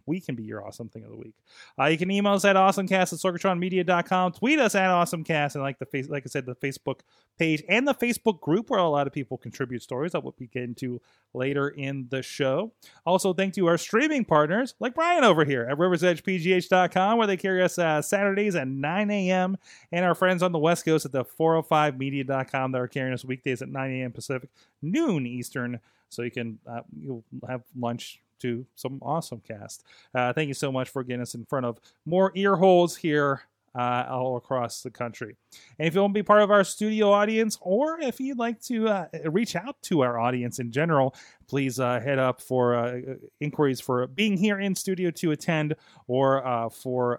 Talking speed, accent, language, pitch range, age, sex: 215 wpm, American, English, 125-185 Hz, 30-49, male